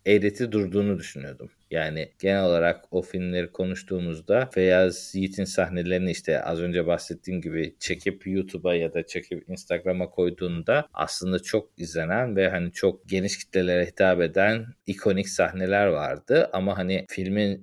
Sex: male